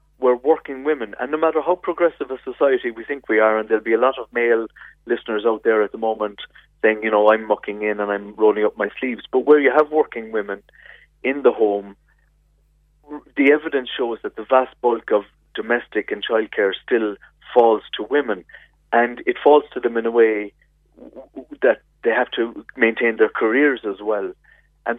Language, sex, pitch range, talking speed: English, male, 105-150 Hz, 195 wpm